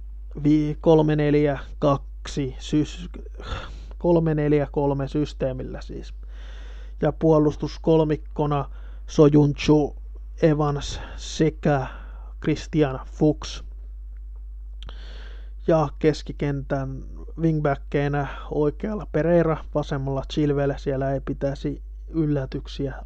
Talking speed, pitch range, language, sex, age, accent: 60 wpm, 135-150 Hz, Finnish, male, 20-39, native